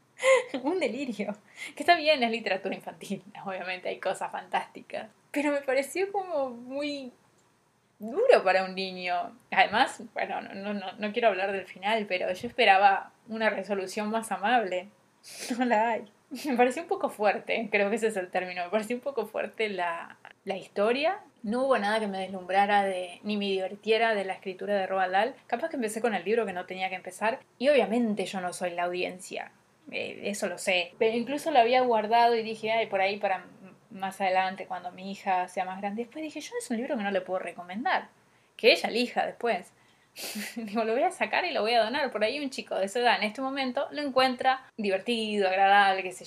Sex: female